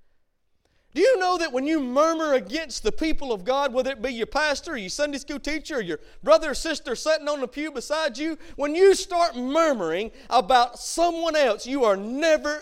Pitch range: 190-305 Hz